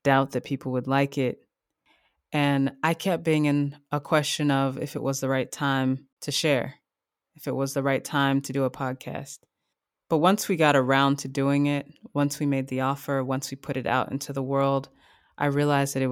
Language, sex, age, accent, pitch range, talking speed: English, female, 20-39, American, 135-145 Hz, 210 wpm